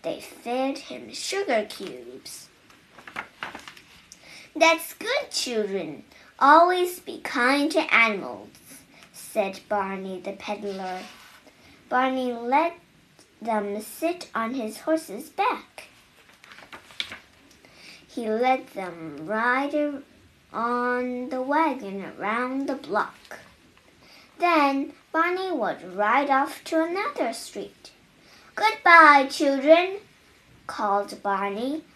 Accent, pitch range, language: American, 220-320 Hz, Chinese